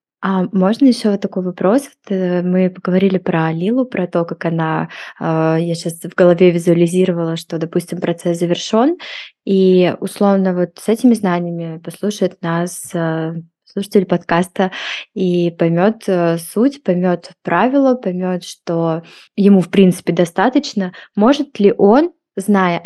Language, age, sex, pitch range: Russian, 20-39, female, 175-205 Hz